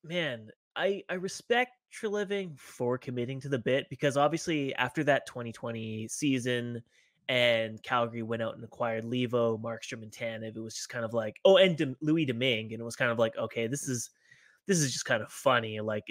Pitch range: 115-160 Hz